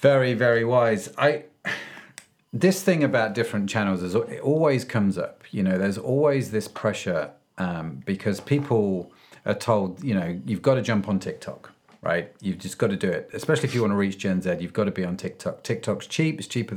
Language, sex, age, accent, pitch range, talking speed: English, male, 40-59, British, 95-120 Hz, 210 wpm